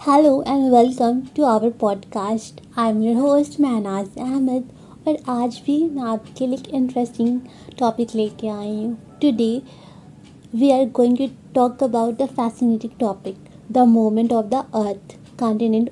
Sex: female